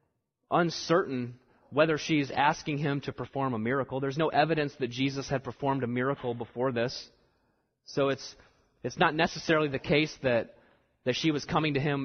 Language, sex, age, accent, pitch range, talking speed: English, male, 30-49, American, 125-150 Hz, 170 wpm